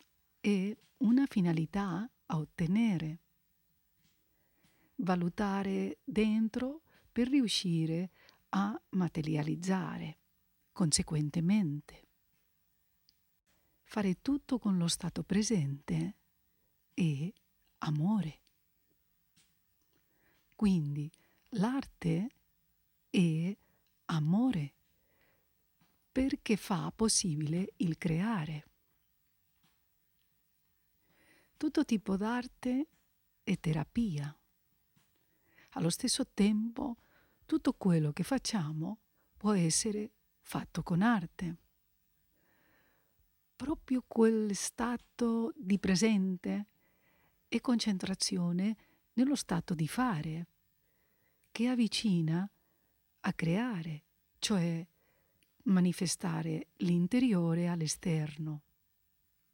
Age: 40-59